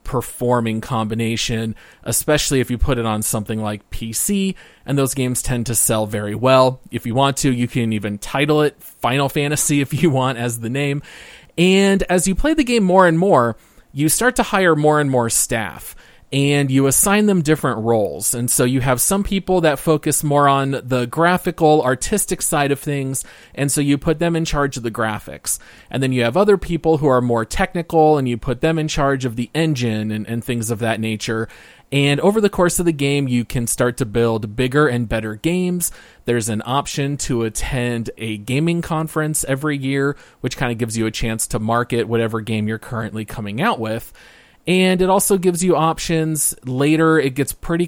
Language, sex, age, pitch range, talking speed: English, male, 30-49, 115-155 Hz, 205 wpm